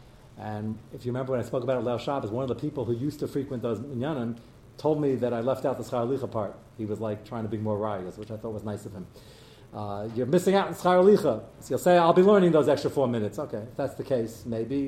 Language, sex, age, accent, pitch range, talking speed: English, male, 40-59, American, 115-150 Hz, 270 wpm